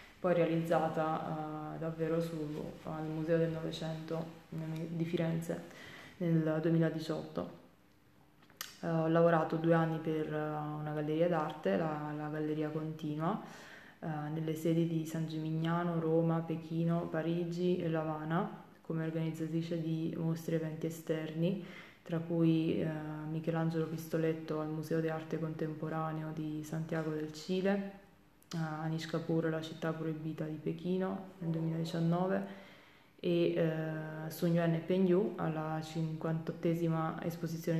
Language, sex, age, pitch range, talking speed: Italian, female, 20-39, 160-170 Hz, 120 wpm